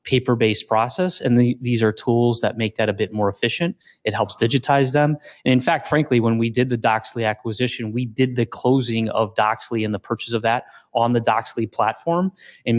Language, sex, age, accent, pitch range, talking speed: English, male, 20-39, American, 105-120 Hz, 205 wpm